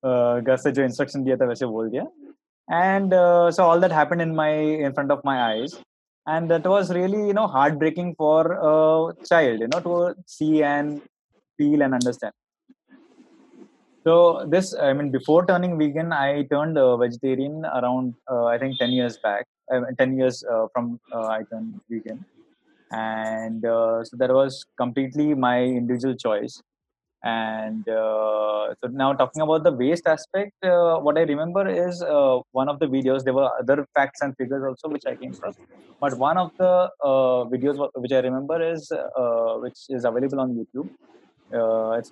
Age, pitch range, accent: 20-39, 125-165 Hz, Indian